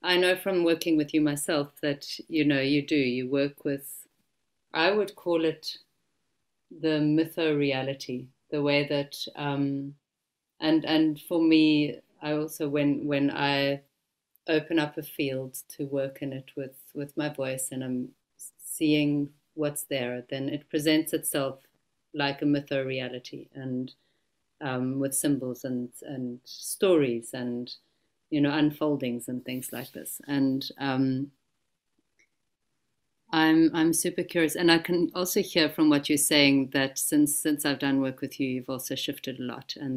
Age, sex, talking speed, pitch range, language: 40-59, female, 155 wpm, 135-160 Hz, English